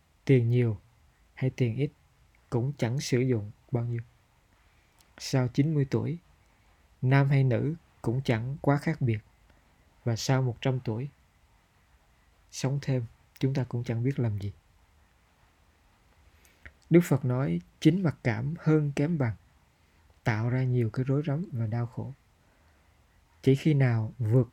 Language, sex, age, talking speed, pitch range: Vietnamese, male, 20-39, 140 wpm, 100-135 Hz